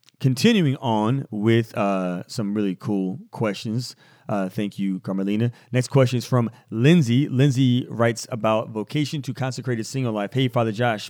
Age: 30-49